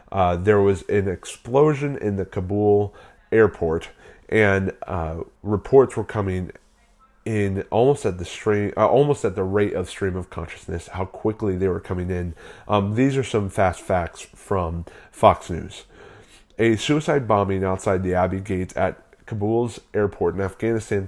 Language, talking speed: English, 155 wpm